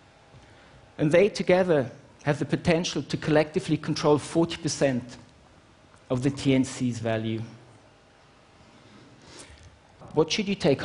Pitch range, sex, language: 125-165 Hz, male, Chinese